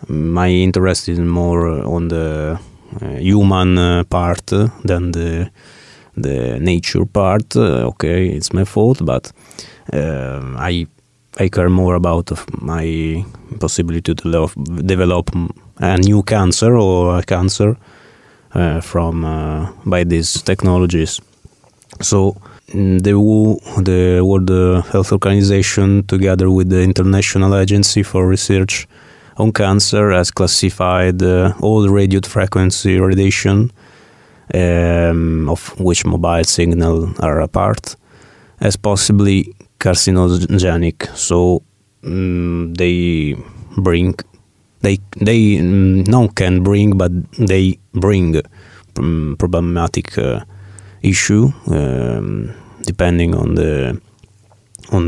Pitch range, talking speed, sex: 85-100 Hz, 105 wpm, male